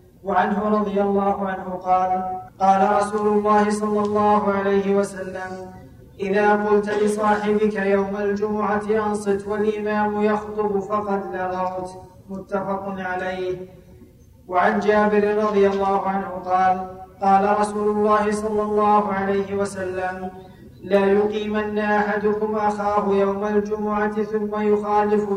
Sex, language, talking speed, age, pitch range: male, Arabic, 105 wpm, 20-39, 195-210 Hz